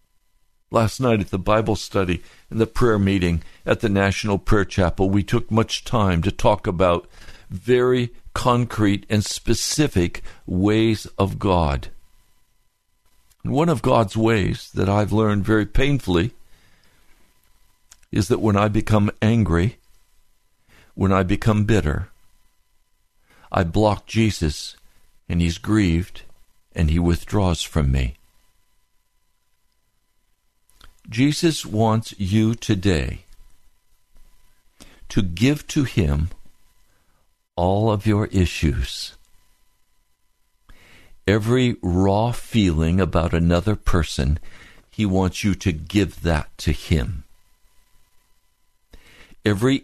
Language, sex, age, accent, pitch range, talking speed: English, male, 60-79, American, 85-115 Hz, 105 wpm